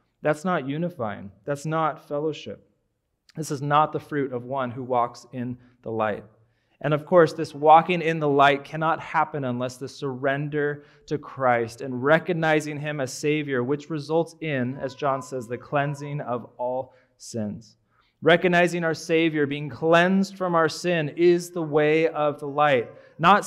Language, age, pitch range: English, 30-49, 135-170 Hz